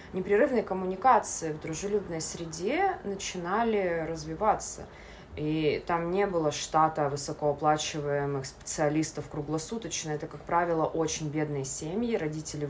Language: Russian